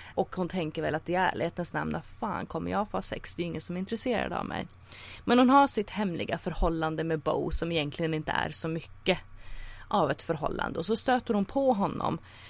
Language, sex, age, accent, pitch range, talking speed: English, female, 30-49, Swedish, 155-210 Hz, 220 wpm